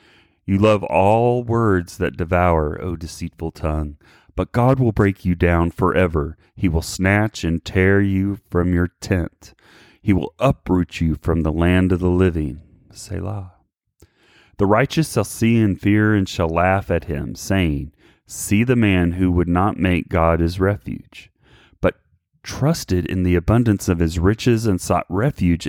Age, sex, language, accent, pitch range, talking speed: 30-49, male, English, American, 85-105 Hz, 160 wpm